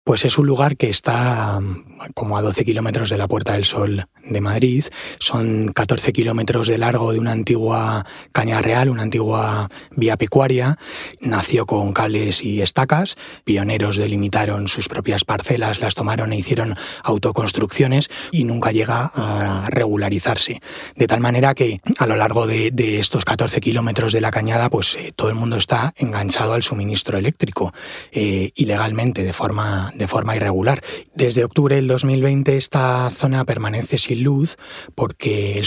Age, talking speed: 20-39, 160 wpm